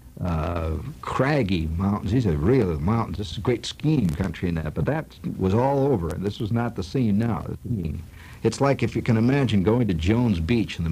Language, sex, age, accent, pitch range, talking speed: English, male, 60-79, American, 90-115 Hz, 210 wpm